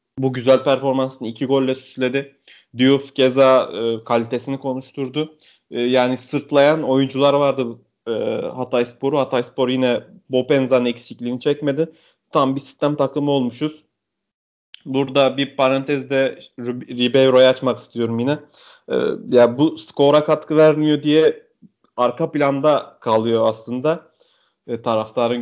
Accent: native